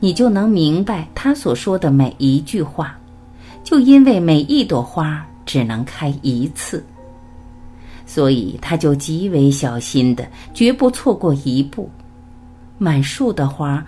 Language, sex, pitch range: Chinese, female, 120-190 Hz